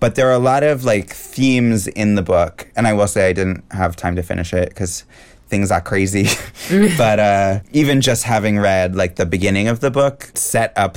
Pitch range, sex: 90-110 Hz, male